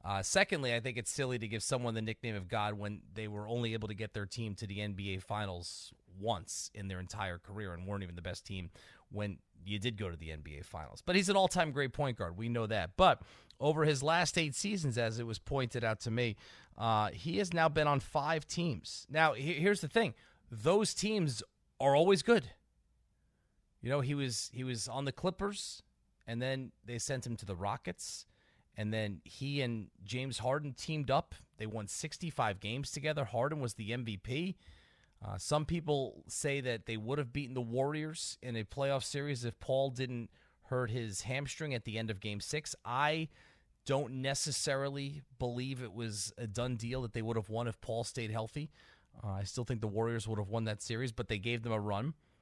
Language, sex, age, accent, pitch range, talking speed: English, male, 30-49, American, 105-140 Hz, 205 wpm